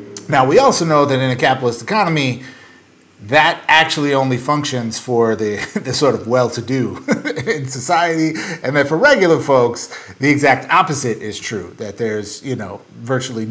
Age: 30-49